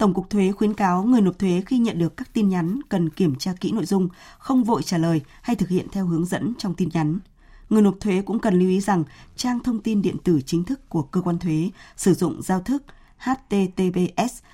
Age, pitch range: 20-39, 170-210 Hz